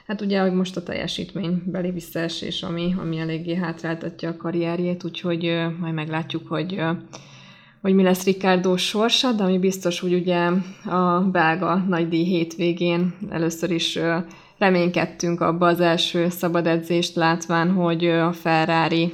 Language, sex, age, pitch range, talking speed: Hungarian, female, 20-39, 170-185 Hz, 140 wpm